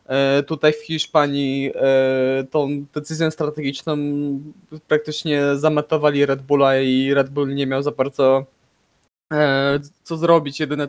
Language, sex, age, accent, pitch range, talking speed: Polish, male, 20-39, native, 145-160 Hz, 110 wpm